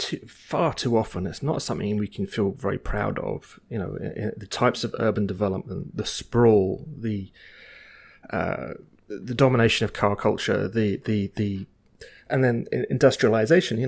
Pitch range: 100-120 Hz